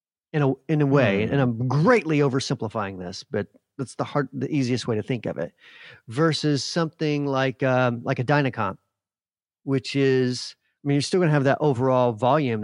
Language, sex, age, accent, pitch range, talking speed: English, male, 40-59, American, 120-150 Hz, 190 wpm